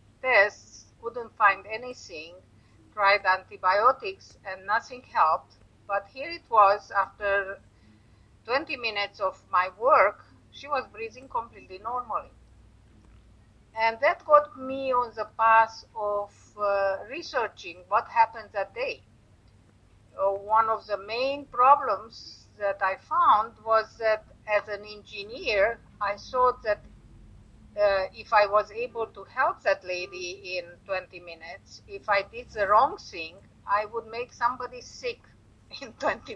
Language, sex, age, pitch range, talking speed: English, female, 50-69, 190-255 Hz, 130 wpm